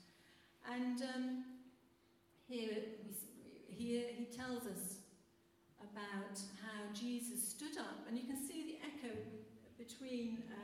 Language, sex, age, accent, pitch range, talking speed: English, female, 50-69, British, 200-255 Hz, 120 wpm